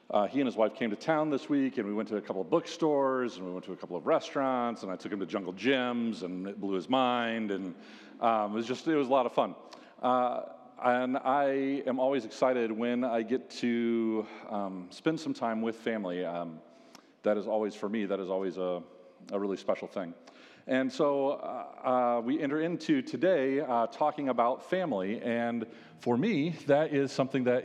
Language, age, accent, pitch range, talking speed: English, 40-59, American, 110-145 Hz, 210 wpm